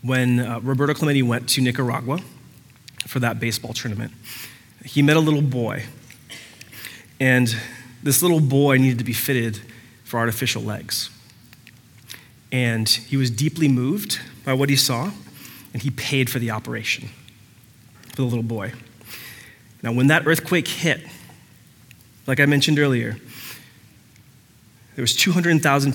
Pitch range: 115-135 Hz